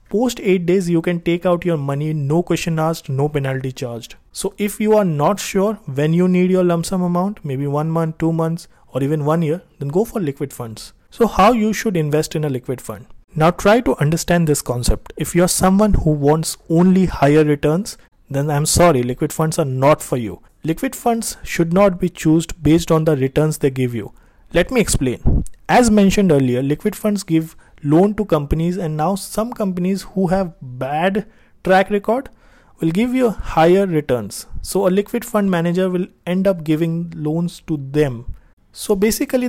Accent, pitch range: Indian, 145-195 Hz